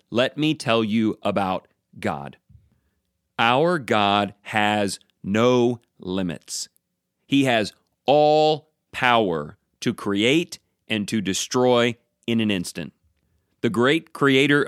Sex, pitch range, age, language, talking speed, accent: male, 105-145 Hz, 40-59, English, 105 wpm, American